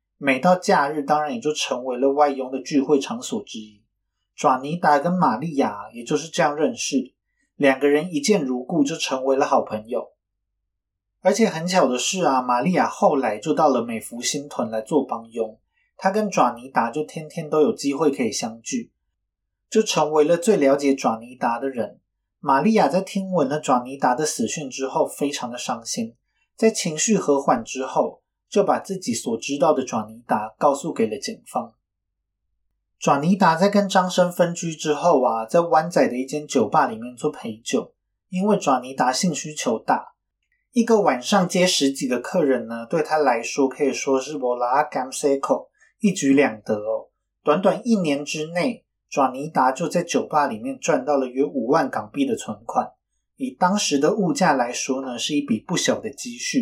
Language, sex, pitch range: Chinese, male, 130-190 Hz